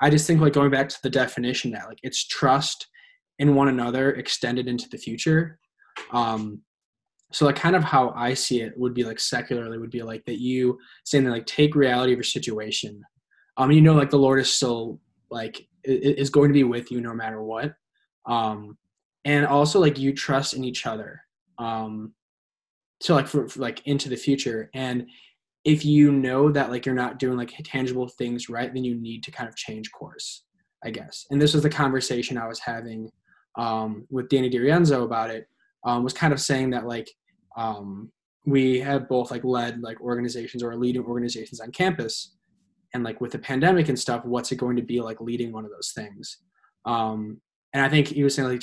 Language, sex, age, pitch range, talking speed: English, male, 10-29, 120-140 Hz, 205 wpm